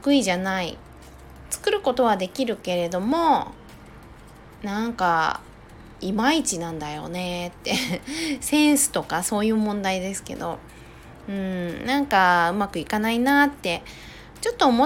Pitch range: 180-285 Hz